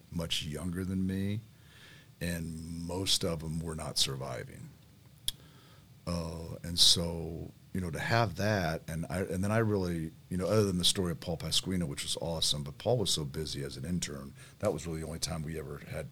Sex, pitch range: male, 80-120 Hz